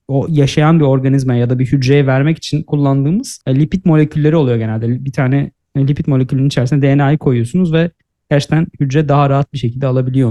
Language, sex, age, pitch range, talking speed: Turkish, male, 30-49, 130-160 Hz, 175 wpm